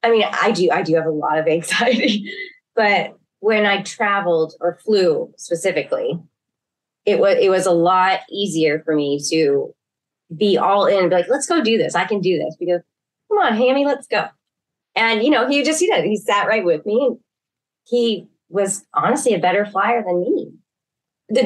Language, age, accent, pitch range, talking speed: English, 20-39, American, 160-205 Hz, 190 wpm